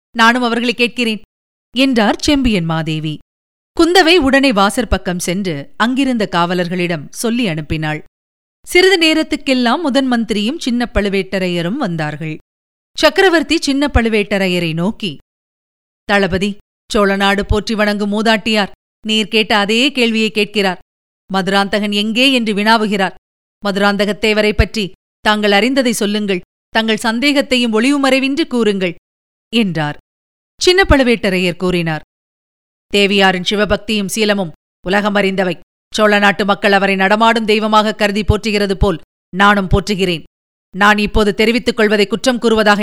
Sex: female